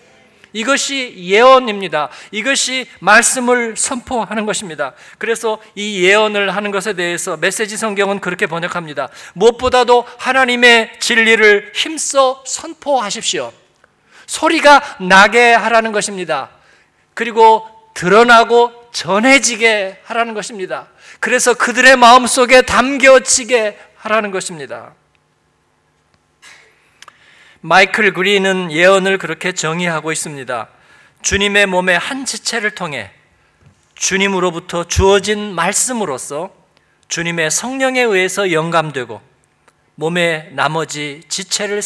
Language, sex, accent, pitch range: Korean, male, native, 170-235 Hz